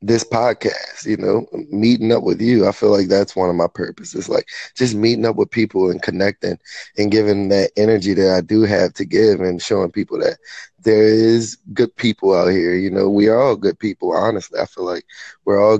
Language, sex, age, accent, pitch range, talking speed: English, male, 20-39, American, 105-120 Hz, 215 wpm